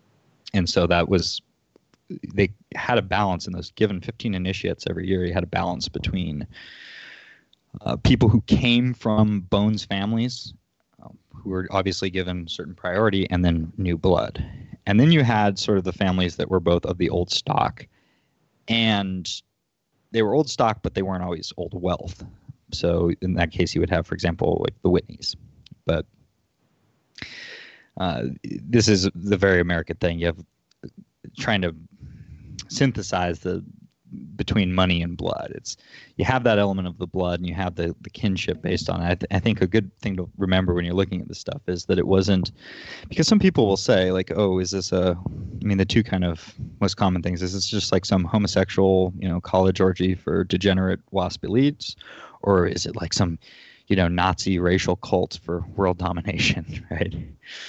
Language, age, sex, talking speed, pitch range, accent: English, 20-39, male, 185 wpm, 90-105 Hz, American